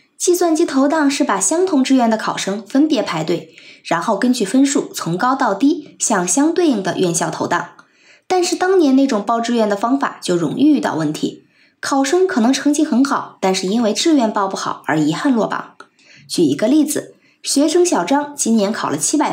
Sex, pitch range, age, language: female, 205-305 Hz, 20-39, Chinese